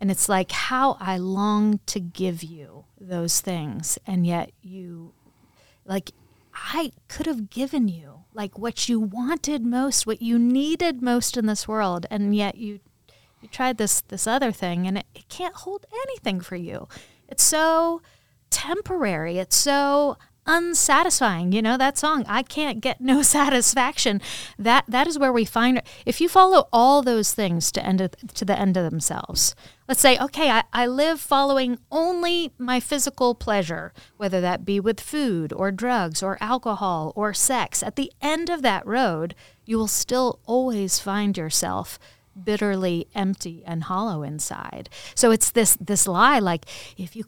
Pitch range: 190-265 Hz